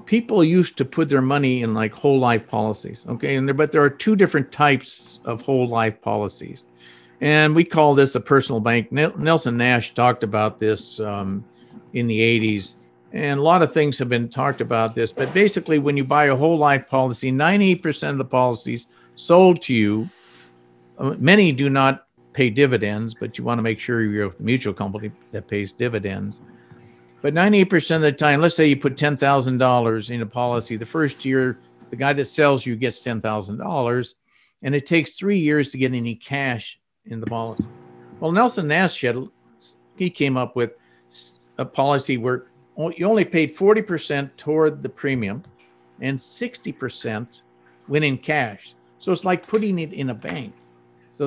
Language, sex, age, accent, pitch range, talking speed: English, male, 50-69, American, 110-150 Hz, 175 wpm